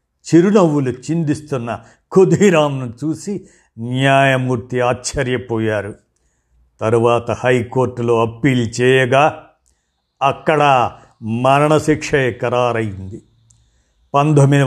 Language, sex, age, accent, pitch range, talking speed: Telugu, male, 50-69, native, 120-150 Hz, 55 wpm